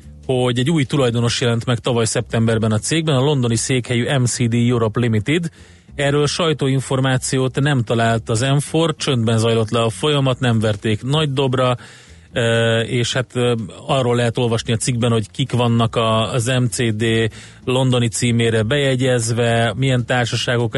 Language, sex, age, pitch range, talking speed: Hungarian, male, 30-49, 115-130 Hz, 140 wpm